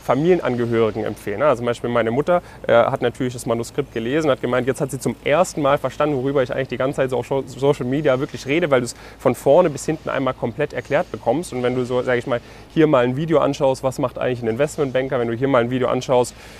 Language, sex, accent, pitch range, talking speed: German, male, German, 120-135 Hz, 250 wpm